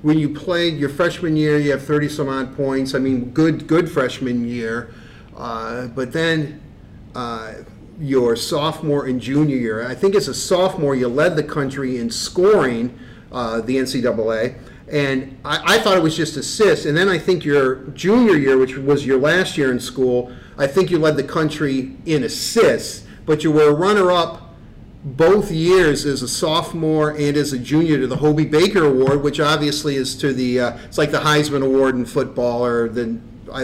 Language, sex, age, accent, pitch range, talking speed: English, male, 40-59, American, 130-165 Hz, 190 wpm